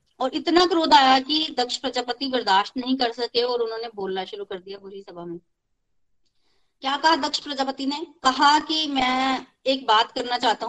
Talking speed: 180 wpm